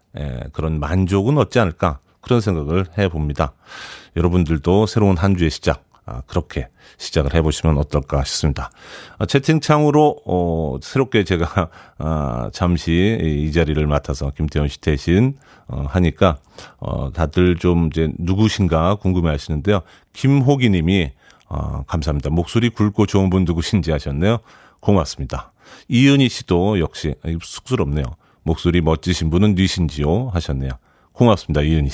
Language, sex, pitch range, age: Korean, male, 75-105 Hz, 40-59